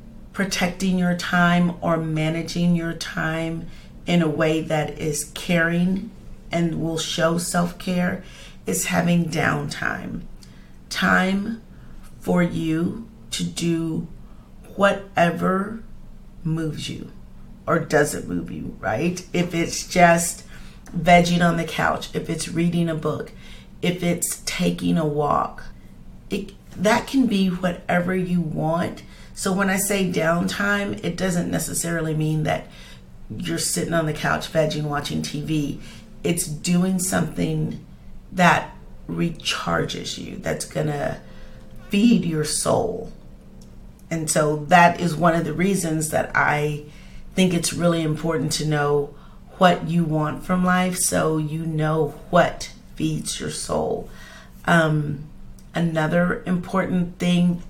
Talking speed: 125 wpm